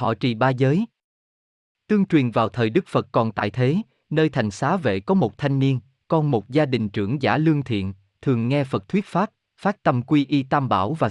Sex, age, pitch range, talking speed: male, 20-39, 110-155 Hz, 220 wpm